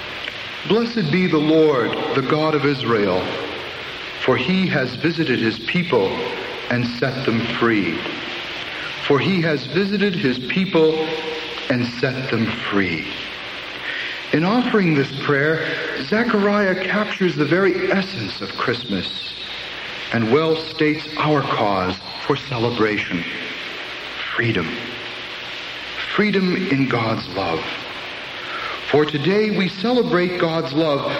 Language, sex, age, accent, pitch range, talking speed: English, male, 60-79, American, 120-180 Hz, 110 wpm